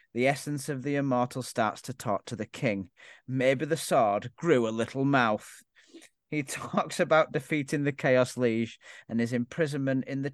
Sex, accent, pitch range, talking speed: male, British, 120-145 Hz, 175 wpm